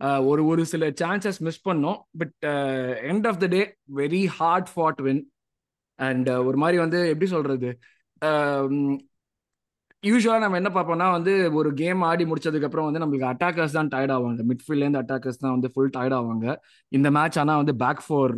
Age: 20-39